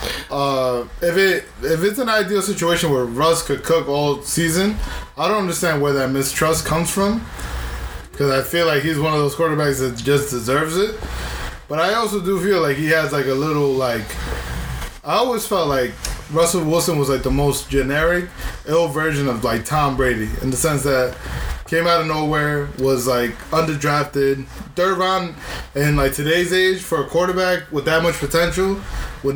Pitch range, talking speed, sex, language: 135-170 Hz, 180 wpm, male, English